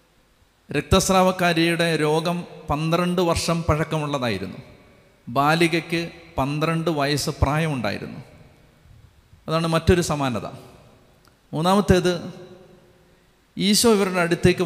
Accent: native